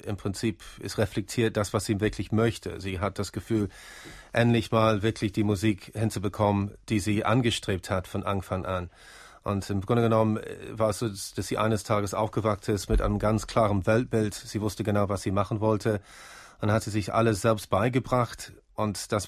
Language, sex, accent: German, male, German